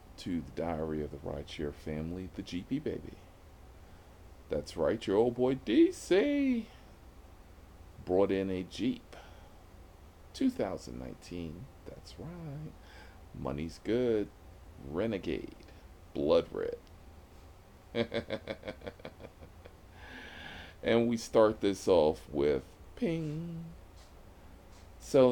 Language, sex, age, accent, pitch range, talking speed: English, male, 40-59, American, 80-100 Hz, 85 wpm